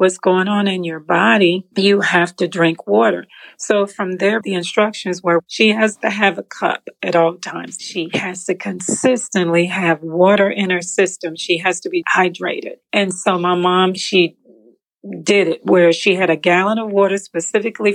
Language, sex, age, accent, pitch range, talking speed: English, female, 40-59, American, 175-205 Hz, 185 wpm